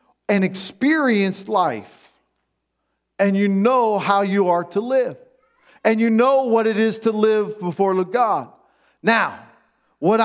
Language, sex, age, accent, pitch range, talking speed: English, male, 40-59, American, 210-265 Hz, 135 wpm